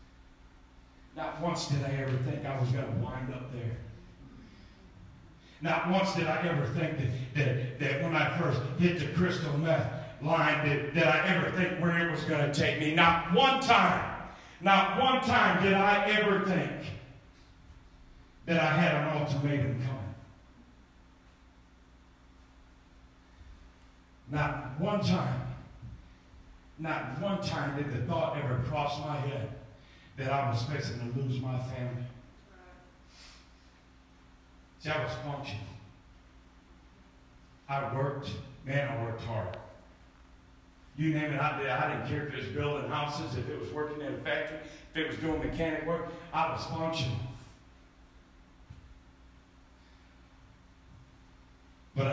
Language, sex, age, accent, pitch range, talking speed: English, male, 50-69, American, 90-150 Hz, 135 wpm